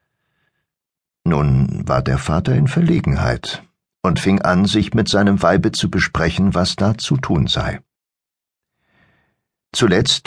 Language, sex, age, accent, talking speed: German, male, 60-79, German, 125 wpm